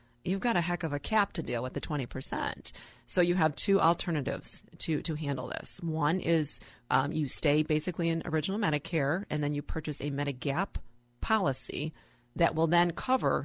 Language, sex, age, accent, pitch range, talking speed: English, female, 40-59, American, 145-180 Hz, 185 wpm